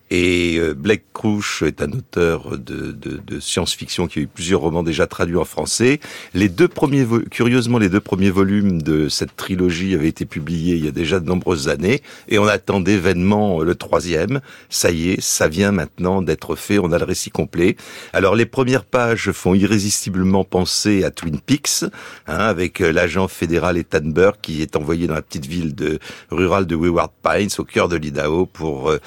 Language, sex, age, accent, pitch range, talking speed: French, male, 60-79, French, 85-110 Hz, 190 wpm